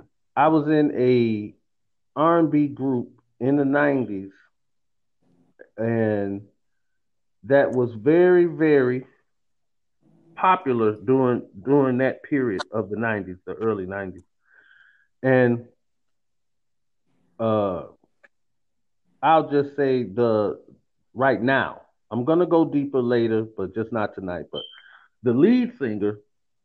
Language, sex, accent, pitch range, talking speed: English, male, American, 115-150 Hz, 105 wpm